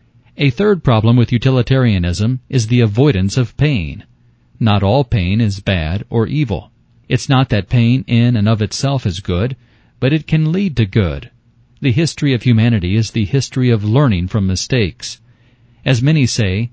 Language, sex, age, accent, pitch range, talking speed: English, male, 40-59, American, 110-130 Hz, 170 wpm